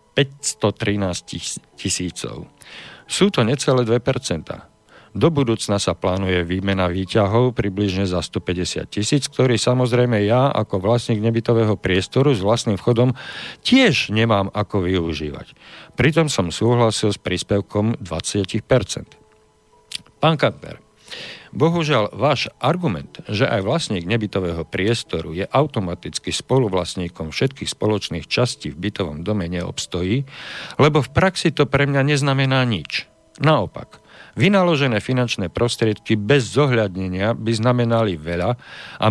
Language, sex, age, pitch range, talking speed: Slovak, male, 50-69, 100-125 Hz, 115 wpm